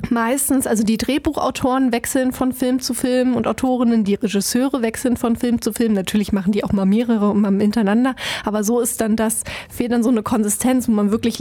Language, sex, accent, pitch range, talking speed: German, female, German, 215-250 Hz, 205 wpm